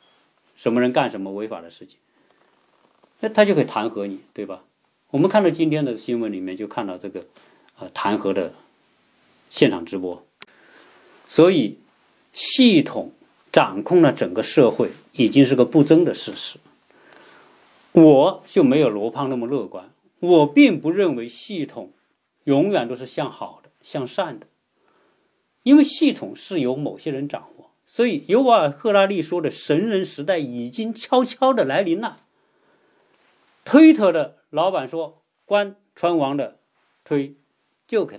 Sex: male